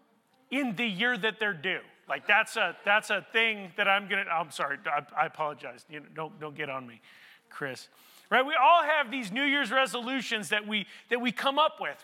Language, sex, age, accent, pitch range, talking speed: English, male, 40-59, American, 185-270 Hz, 210 wpm